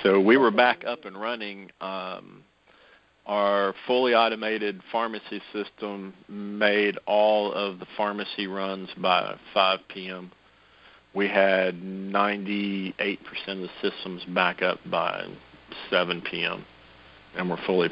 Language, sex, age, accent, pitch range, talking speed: English, male, 50-69, American, 95-105 Hz, 120 wpm